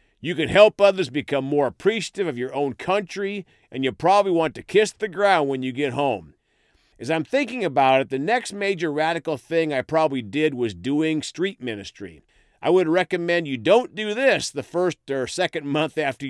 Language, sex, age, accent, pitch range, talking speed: English, male, 50-69, American, 130-180 Hz, 195 wpm